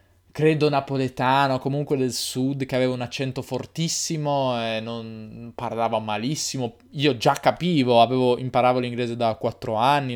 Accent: native